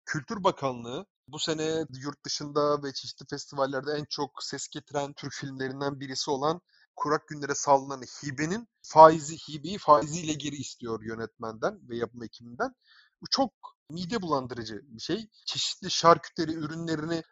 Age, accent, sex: 30-49, native, male